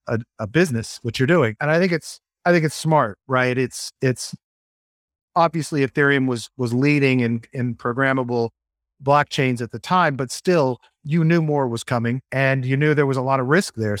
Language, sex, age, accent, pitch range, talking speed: English, male, 40-59, American, 120-155 Hz, 195 wpm